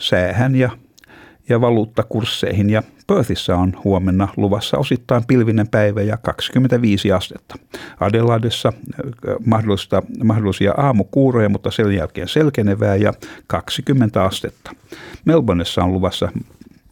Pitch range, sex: 95-115 Hz, male